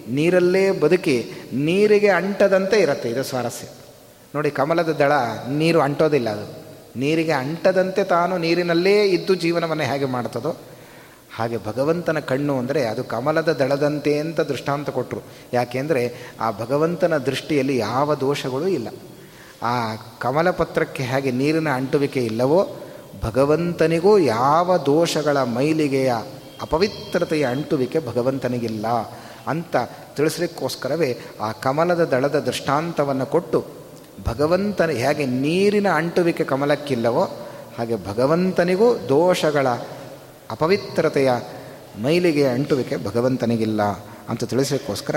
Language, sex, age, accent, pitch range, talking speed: Kannada, male, 30-49, native, 125-160 Hz, 95 wpm